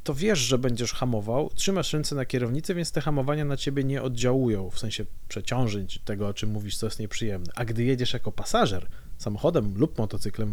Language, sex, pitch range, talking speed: Polish, male, 110-140 Hz, 195 wpm